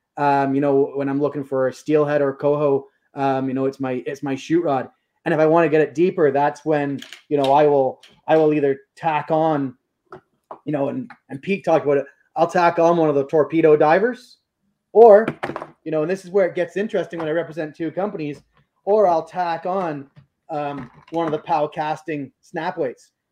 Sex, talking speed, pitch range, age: male, 210 wpm, 135-160 Hz, 20-39